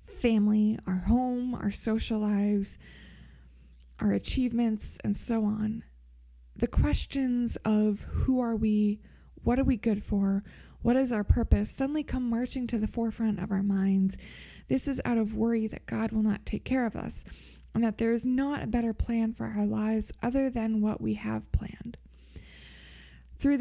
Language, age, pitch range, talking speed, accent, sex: English, 20-39, 185-240 Hz, 170 wpm, American, female